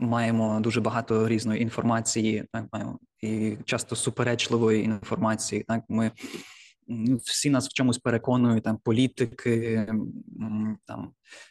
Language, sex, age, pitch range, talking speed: Ukrainian, male, 20-39, 110-125 Hz, 110 wpm